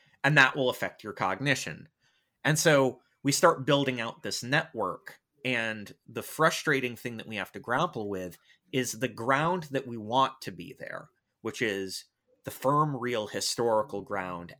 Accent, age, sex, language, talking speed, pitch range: American, 30-49, male, English, 165 wpm, 105-135 Hz